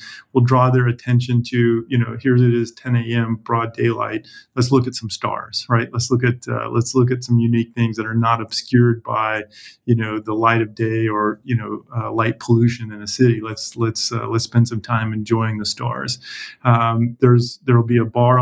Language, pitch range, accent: English, 115-125 Hz, American